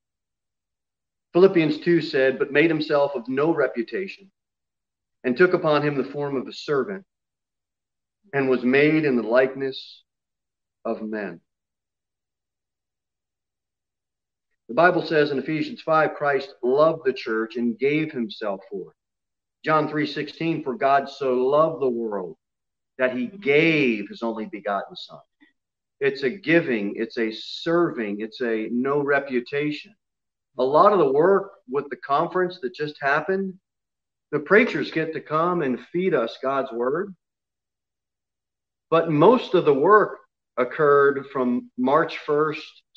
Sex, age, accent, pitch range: male, 40-59, American, 125-170 Hz